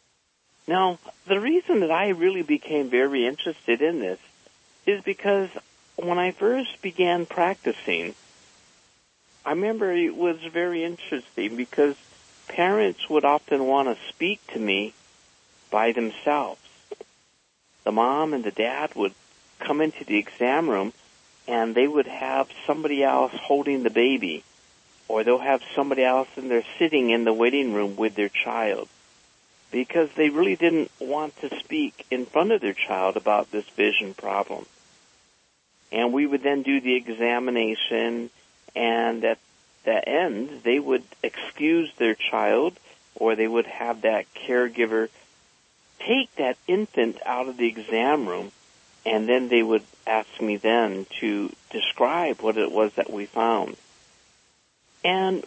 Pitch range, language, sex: 115-170 Hz, English, male